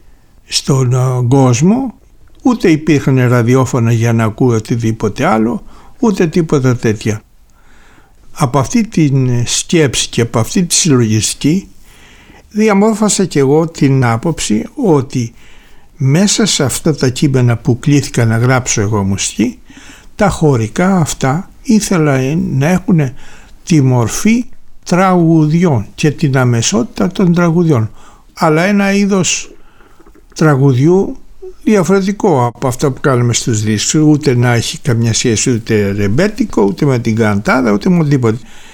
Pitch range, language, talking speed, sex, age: 120-180 Hz, Greek, 120 wpm, male, 60-79